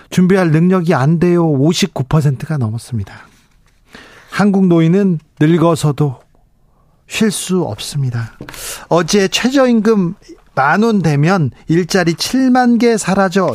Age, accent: 40-59, native